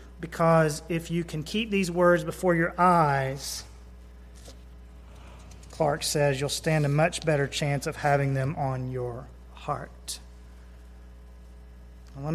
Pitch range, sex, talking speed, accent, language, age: 135-180 Hz, male, 120 wpm, American, English, 30-49